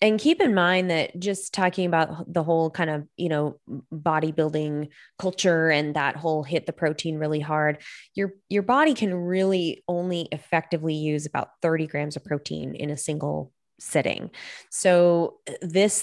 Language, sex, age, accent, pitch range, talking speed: English, female, 20-39, American, 150-175 Hz, 160 wpm